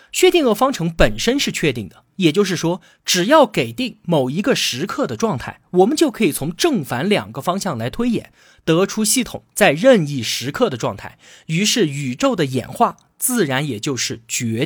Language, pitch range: Chinese, 135-220 Hz